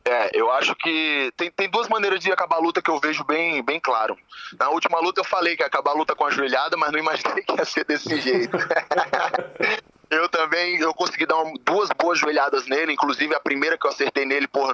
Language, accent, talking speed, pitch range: English, Brazilian, 230 wpm, 135-170 Hz